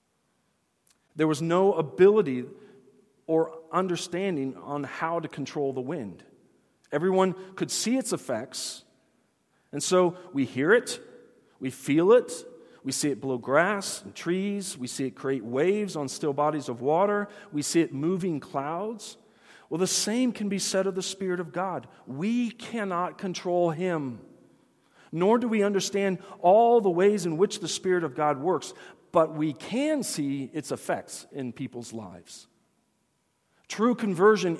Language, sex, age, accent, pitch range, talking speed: English, male, 40-59, American, 145-205 Hz, 150 wpm